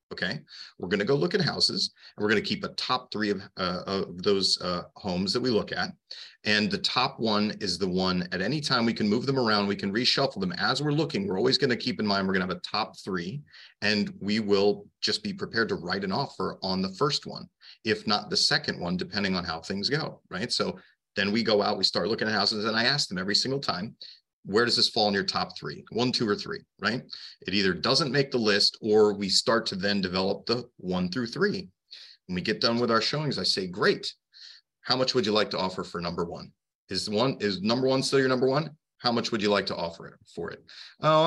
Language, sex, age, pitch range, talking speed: English, male, 30-49, 100-145 Hz, 250 wpm